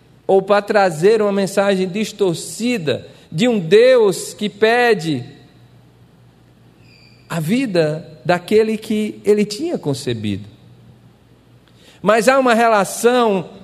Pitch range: 205-240 Hz